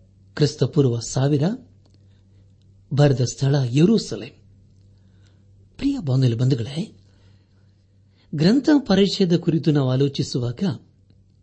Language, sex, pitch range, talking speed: Kannada, male, 100-150 Hz, 60 wpm